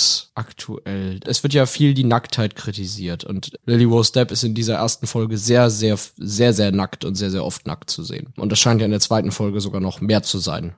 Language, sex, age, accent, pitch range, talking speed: German, male, 20-39, German, 115-155 Hz, 240 wpm